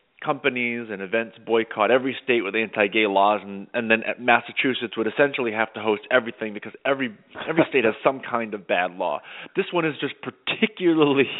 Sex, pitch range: male, 115-150 Hz